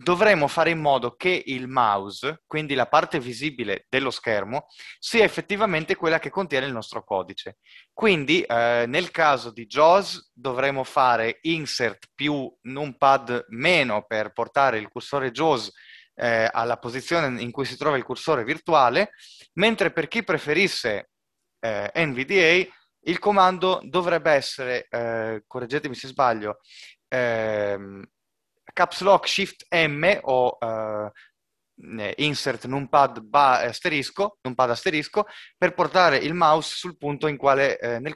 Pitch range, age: 120-165 Hz, 20-39